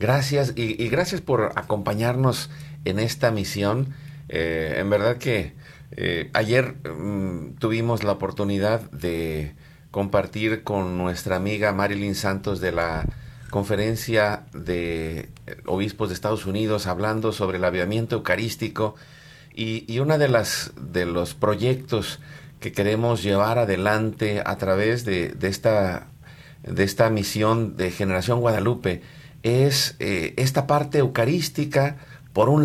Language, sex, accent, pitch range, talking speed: Spanish, male, Mexican, 105-135 Hz, 125 wpm